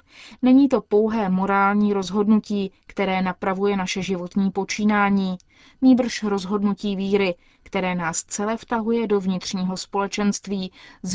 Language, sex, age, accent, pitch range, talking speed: Czech, female, 20-39, native, 185-215 Hz, 115 wpm